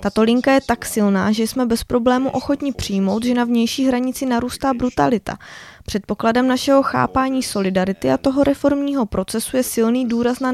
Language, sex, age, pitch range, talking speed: Czech, female, 20-39, 210-255 Hz, 165 wpm